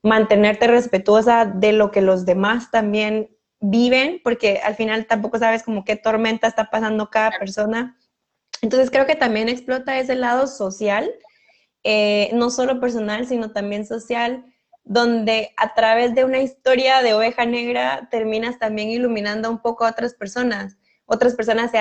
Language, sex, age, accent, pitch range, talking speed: Spanish, female, 20-39, Mexican, 215-245 Hz, 155 wpm